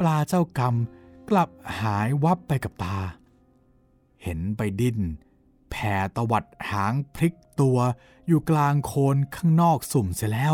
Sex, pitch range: male, 95-140 Hz